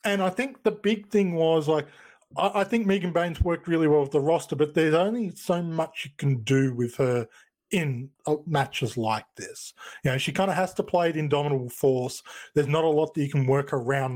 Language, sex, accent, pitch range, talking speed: English, male, Australian, 135-165 Hz, 230 wpm